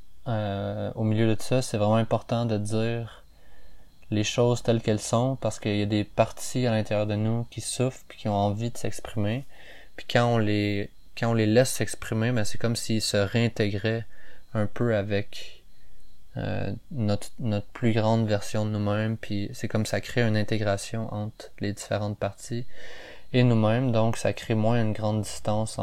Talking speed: 185 wpm